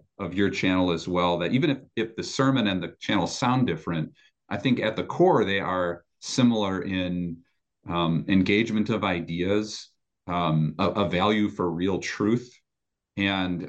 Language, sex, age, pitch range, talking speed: English, male, 40-59, 90-115 Hz, 160 wpm